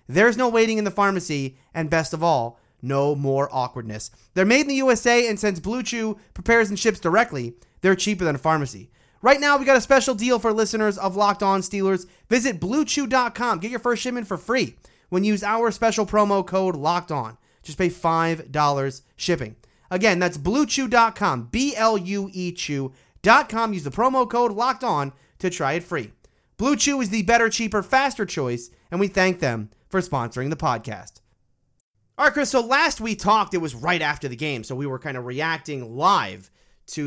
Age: 30-49